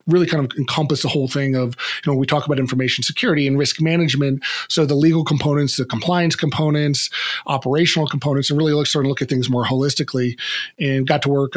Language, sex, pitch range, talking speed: English, male, 130-150 Hz, 215 wpm